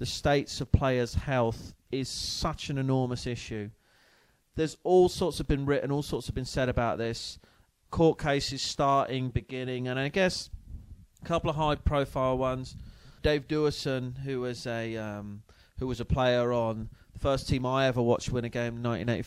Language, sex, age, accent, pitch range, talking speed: English, male, 30-49, British, 115-135 Hz, 180 wpm